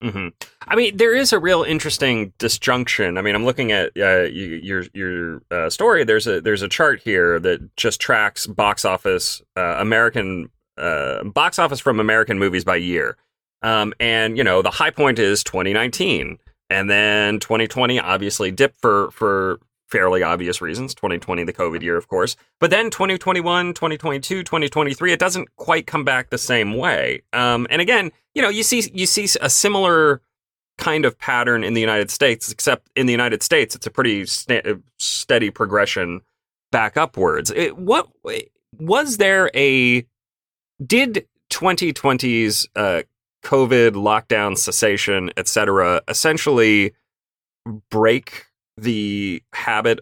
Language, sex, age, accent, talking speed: English, male, 30-49, American, 150 wpm